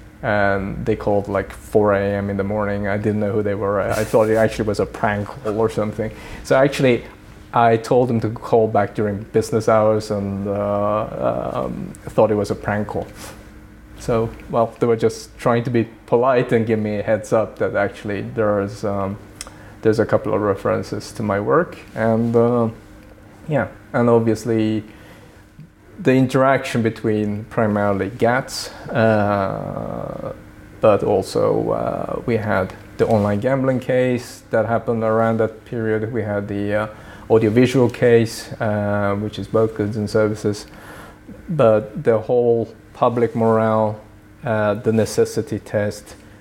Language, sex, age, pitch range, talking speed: English, male, 20-39, 105-115 Hz, 155 wpm